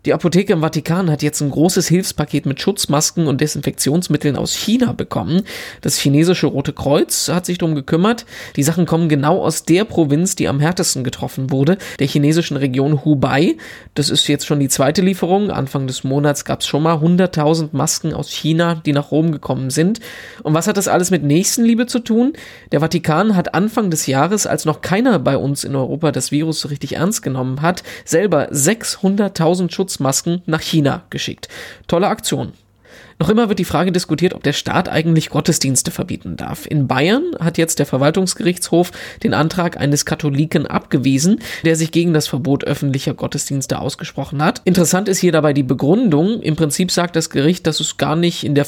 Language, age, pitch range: German, 20-39, 145-175 Hz